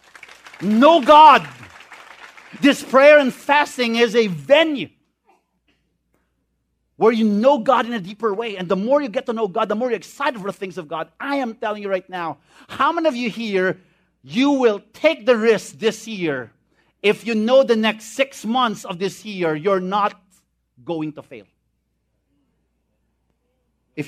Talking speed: 170 wpm